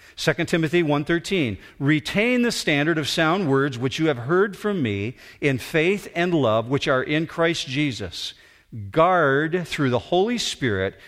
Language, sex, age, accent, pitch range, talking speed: English, male, 50-69, American, 105-155 Hz, 155 wpm